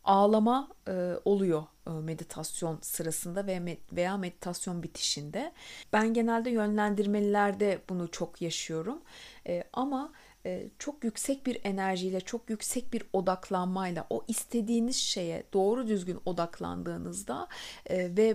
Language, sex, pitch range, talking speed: Turkish, female, 180-230 Hz, 95 wpm